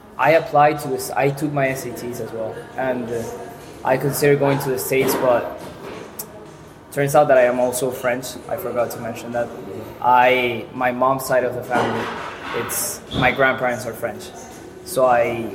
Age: 20-39